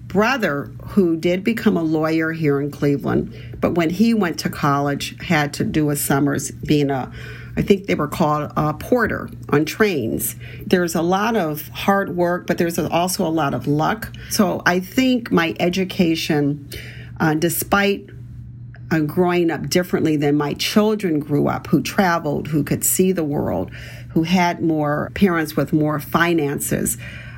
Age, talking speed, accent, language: 50-69, 160 wpm, American, English